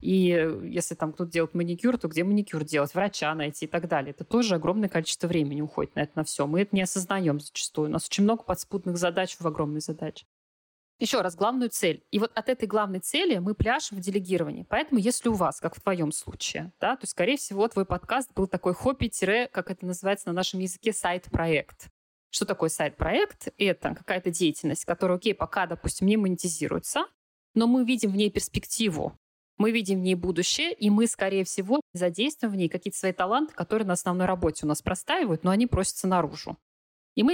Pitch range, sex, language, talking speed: 165-215 Hz, female, Russian, 200 wpm